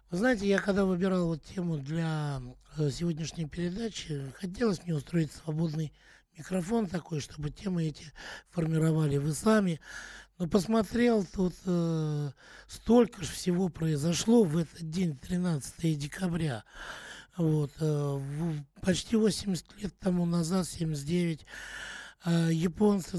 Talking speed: 115 wpm